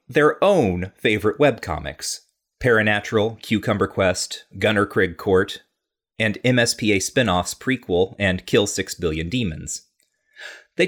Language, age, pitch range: English, 30-49, 95-135 Hz